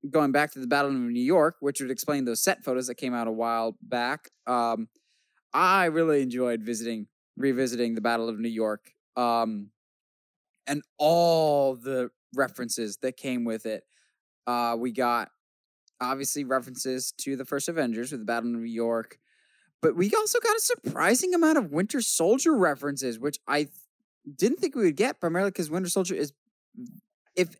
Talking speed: 170 wpm